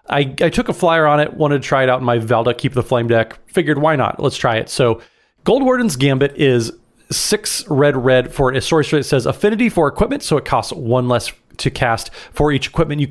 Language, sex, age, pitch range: English, male, 30-49, 125-165 Hz